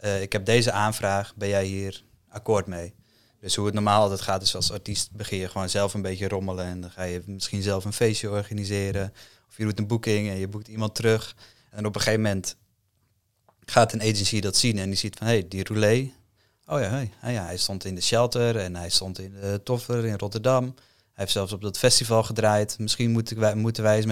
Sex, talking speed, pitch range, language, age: male, 235 wpm, 100-110 Hz, Dutch, 20-39